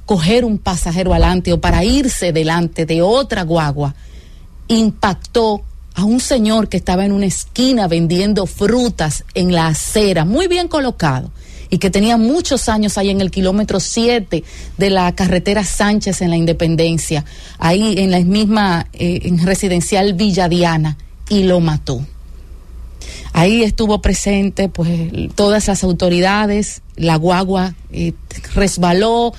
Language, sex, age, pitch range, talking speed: English, female, 30-49, 165-210 Hz, 135 wpm